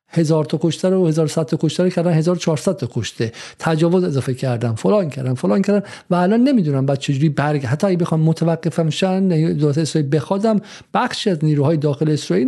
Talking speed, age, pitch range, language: 190 wpm, 50-69, 140-180 Hz, Persian